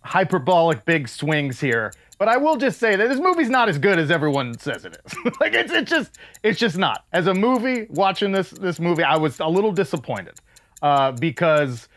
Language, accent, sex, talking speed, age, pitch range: English, American, male, 205 wpm, 30-49, 145-230 Hz